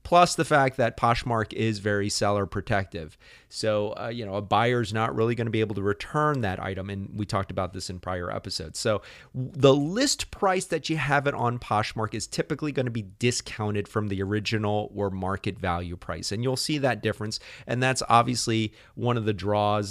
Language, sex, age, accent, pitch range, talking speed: English, male, 30-49, American, 100-130 Hz, 200 wpm